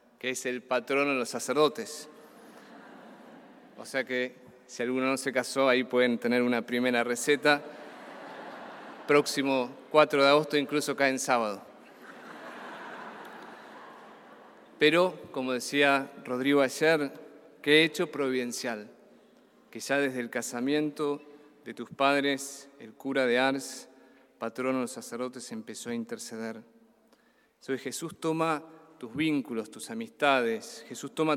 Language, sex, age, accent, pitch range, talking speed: Spanish, male, 40-59, Argentinian, 125-150 Hz, 125 wpm